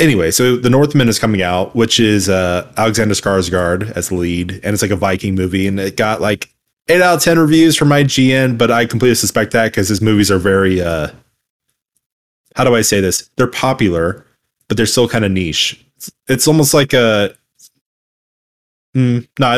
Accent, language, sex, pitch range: American, English, male, 100-125 Hz